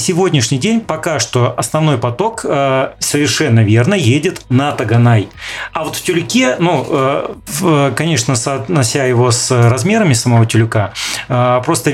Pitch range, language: 125-160 Hz, Russian